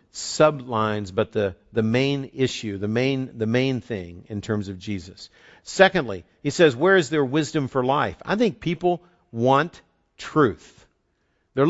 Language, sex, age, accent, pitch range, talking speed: English, male, 50-69, American, 120-175 Hz, 155 wpm